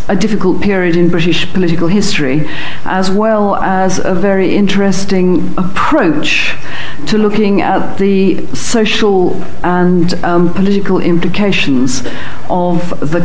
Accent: British